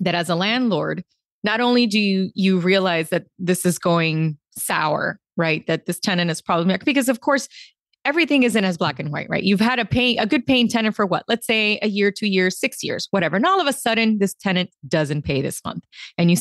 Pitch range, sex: 170-225 Hz, female